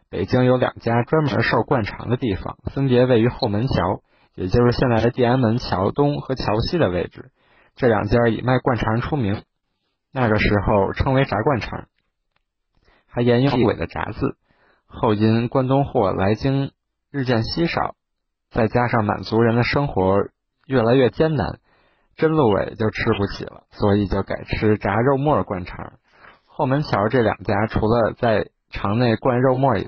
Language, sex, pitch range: Chinese, male, 105-135 Hz